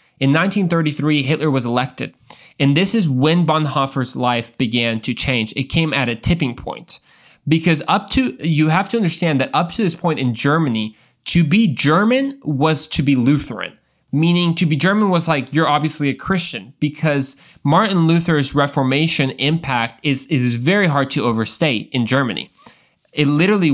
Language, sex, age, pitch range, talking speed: English, male, 20-39, 125-160 Hz, 165 wpm